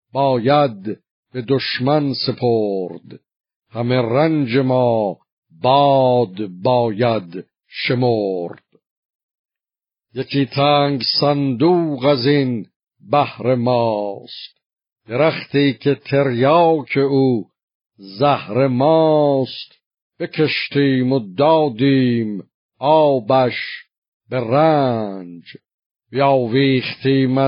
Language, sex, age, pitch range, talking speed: Persian, male, 50-69, 115-140 Hz, 70 wpm